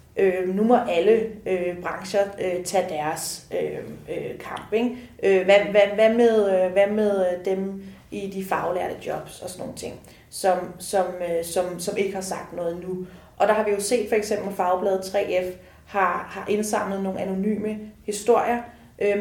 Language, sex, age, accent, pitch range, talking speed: Danish, female, 30-49, native, 190-220 Hz, 180 wpm